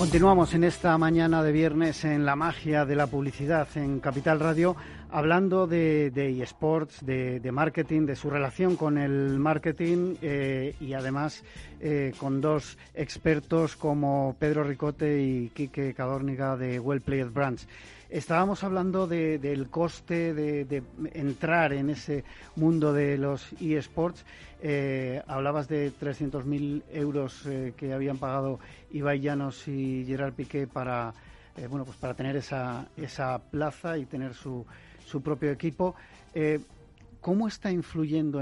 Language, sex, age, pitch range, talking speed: Spanish, male, 40-59, 135-160 Hz, 145 wpm